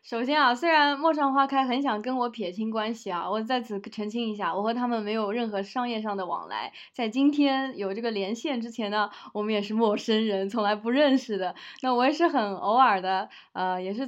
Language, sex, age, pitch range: Chinese, female, 20-39, 195-250 Hz